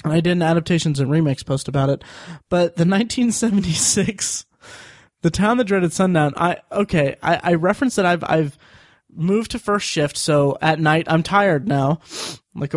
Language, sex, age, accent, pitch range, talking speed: English, male, 20-39, American, 145-175 Hz, 170 wpm